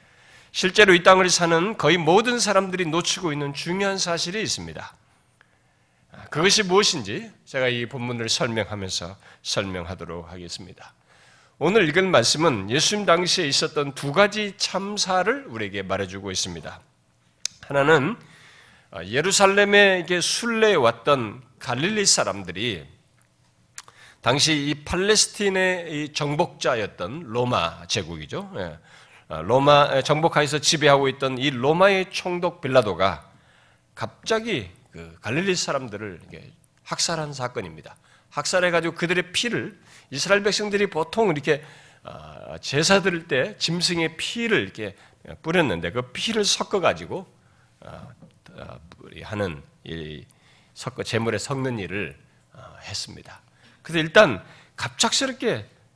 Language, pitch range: Korean, 110-185 Hz